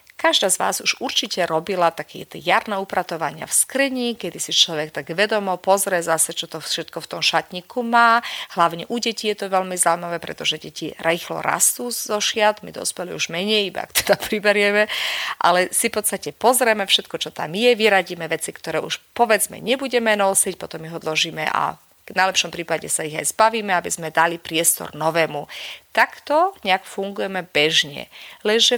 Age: 40-59